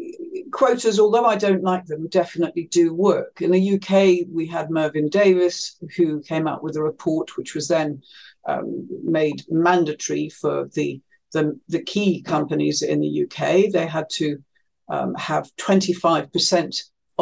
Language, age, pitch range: English, 50-69, 160-205 Hz